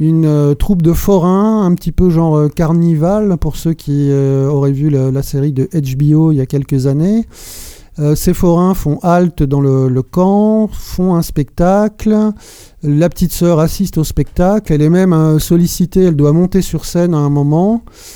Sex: male